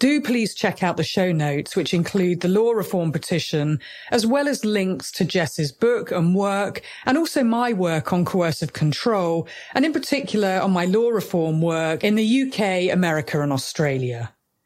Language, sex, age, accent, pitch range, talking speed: English, female, 40-59, British, 155-215 Hz, 175 wpm